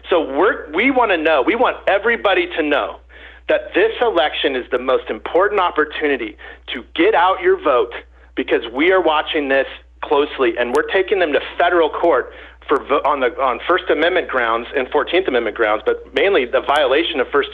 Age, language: 40-59, English